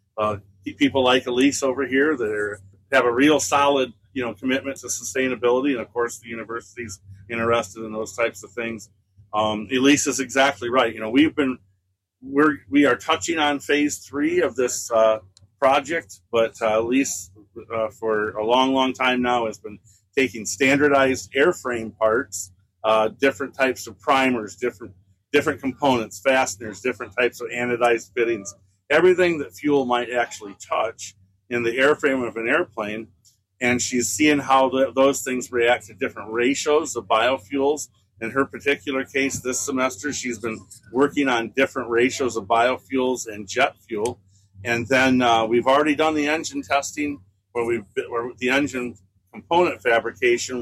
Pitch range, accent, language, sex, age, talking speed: 110-135 Hz, American, English, male, 40-59, 160 wpm